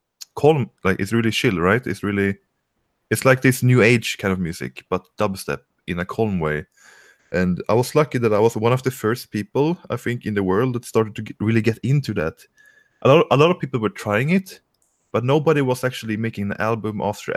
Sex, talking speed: male, 220 wpm